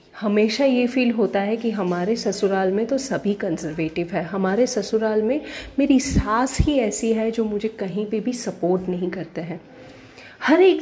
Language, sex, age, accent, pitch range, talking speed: Hindi, female, 30-49, native, 210-275 Hz, 175 wpm